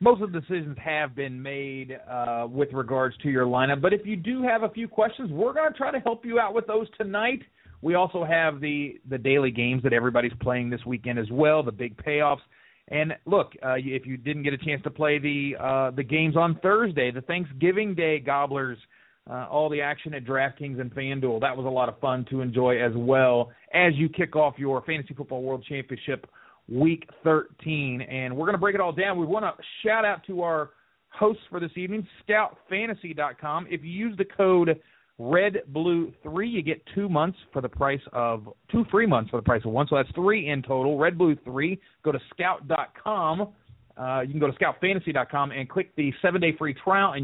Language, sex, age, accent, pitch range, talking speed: English, male, 30-49, American, 130-175 Hz, 215 wpm